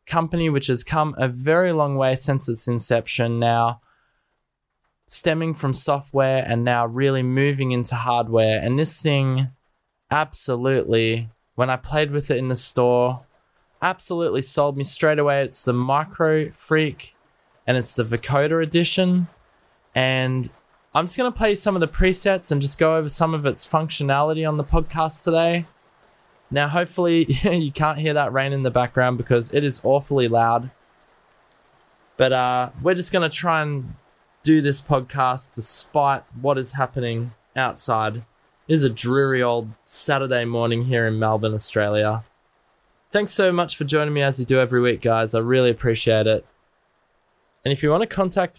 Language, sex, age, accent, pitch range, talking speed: English, male, 20-39, Australian, 125-160 Hz, 165 wpm